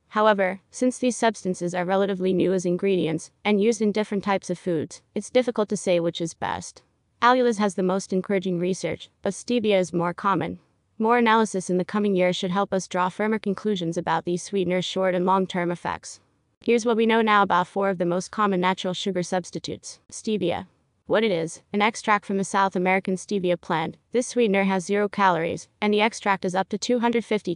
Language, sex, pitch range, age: English, female, 180-210 Hz, 30-49